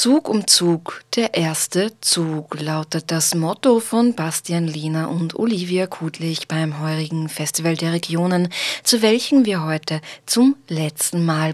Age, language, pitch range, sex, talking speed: 20-39, German, 155-190 Hz, female, 140 wpm